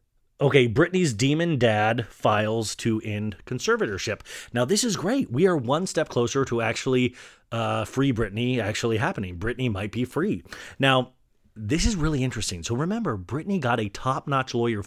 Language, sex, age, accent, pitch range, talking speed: English, male, 30-49, American, 105-135 Hz, 160 wpm